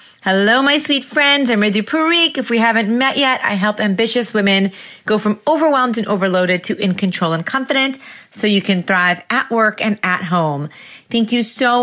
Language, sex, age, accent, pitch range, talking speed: English, female, 30-49, American, 190-240 Hz, 195 wpm